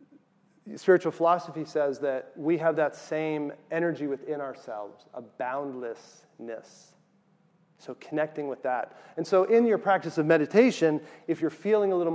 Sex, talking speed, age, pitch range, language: male, 145 wpm, 30-49, 150-195 Hz, English